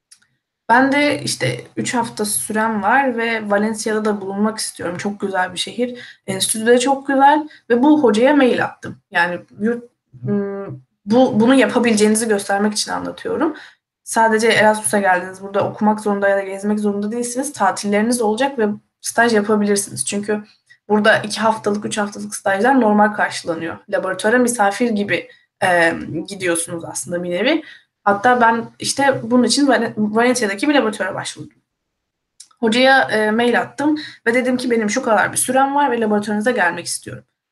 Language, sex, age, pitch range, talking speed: Turkish, female, 10-29, 205-245 Hz, 145 wpm